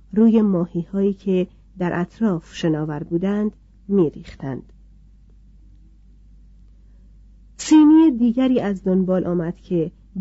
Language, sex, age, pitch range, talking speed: Persian, female, 40-59, 165-215 Hz, 80 wpm